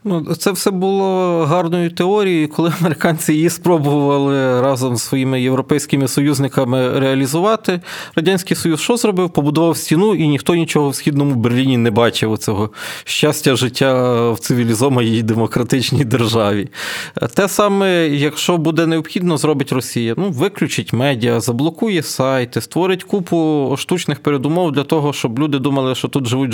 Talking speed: 135 wpm